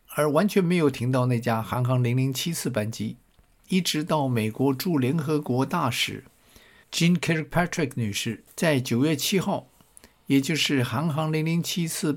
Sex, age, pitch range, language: male, 50-69, 125-165 Hz, Chinese